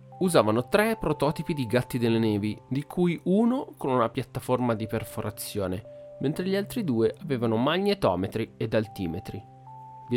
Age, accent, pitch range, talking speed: 30-49, native, 110-150 Hz, 140 wpm